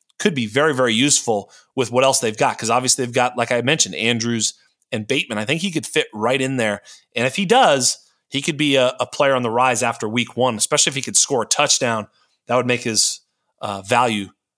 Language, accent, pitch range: English, American, 120-145 Hz